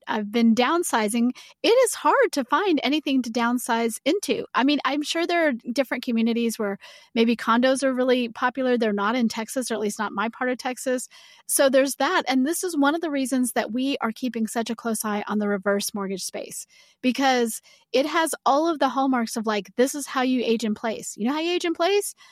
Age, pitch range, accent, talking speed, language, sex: 30-49, 230-275 Hz, American, 225 wpm, English, female